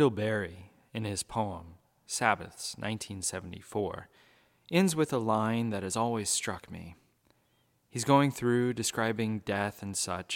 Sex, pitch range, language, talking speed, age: male, 95-120 Hz, English, 135 wpm, 30-49